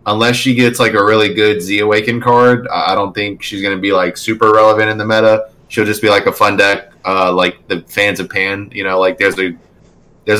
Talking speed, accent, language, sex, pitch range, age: 235 wpm, American, English, male, 95-120 Hz, 20-39